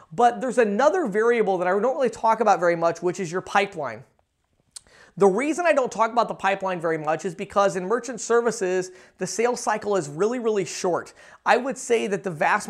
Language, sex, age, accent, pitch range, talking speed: English, male, 30-49, American, 180-215 Hz, 210 wpm